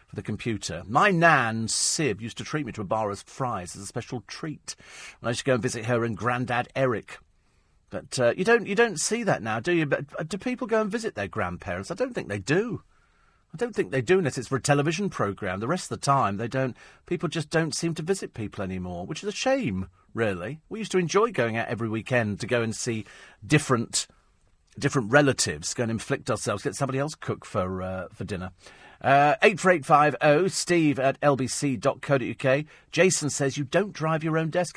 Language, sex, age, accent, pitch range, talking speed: English, male, 40-59, British, 115-165 Hz, 215 wpm